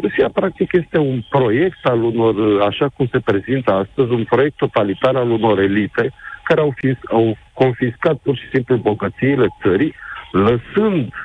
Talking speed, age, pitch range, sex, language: 155 wpm, 50-69, 110-160 Hz, male, Romanian